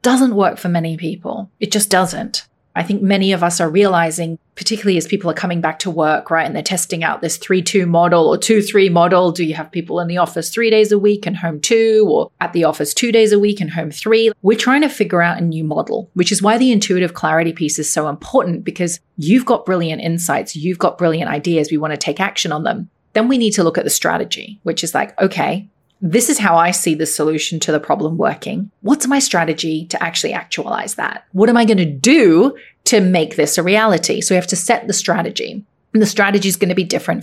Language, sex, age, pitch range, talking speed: English, female, 30-49, 165-210 Hz, 240 wpm